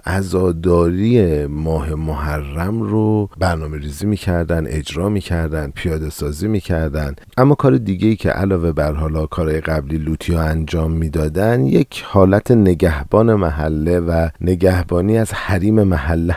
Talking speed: 120 wpm